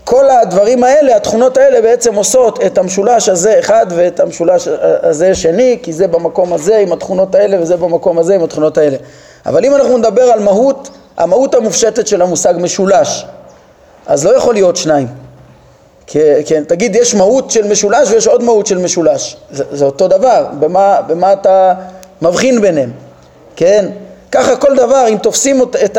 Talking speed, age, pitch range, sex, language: 170 wpm, 30-49, 180-265 Hz, male, Hebrew